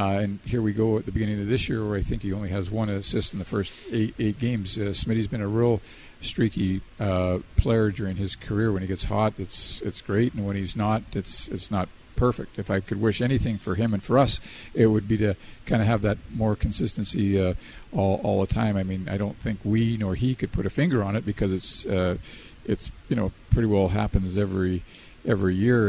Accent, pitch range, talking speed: American, 95-110 Hz, 235 wpm